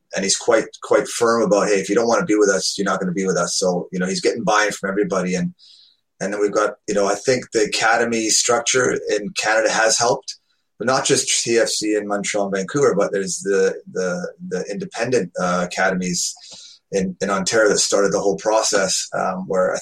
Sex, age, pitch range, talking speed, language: male, 30-49, 95-115 Hz, 220 wpm, English